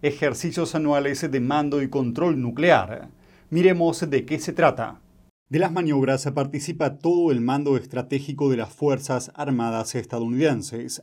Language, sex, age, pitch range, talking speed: Spanish, male, 30-49, 120-145 Hz, 135 wpm